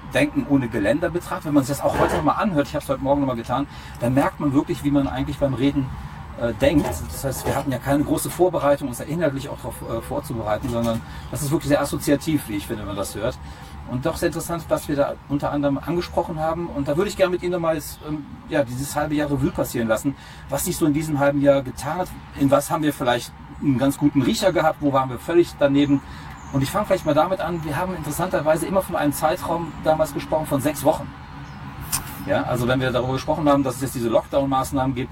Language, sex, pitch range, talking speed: German, male, 120-155 Hz, 245 wpm